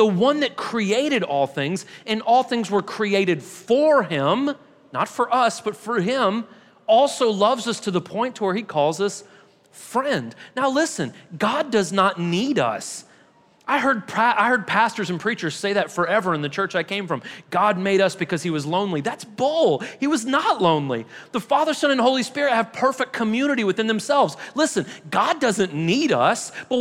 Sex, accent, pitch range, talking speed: male, American, 160-240 Hz, 190 wpm